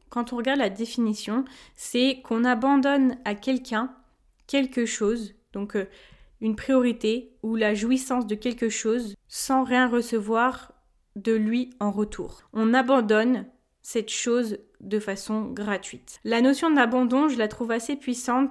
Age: 20-39